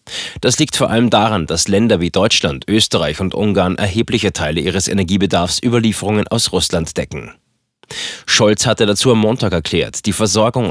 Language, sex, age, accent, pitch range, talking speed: German, male, 30-49, German, 95-115 Hz, 155 wpm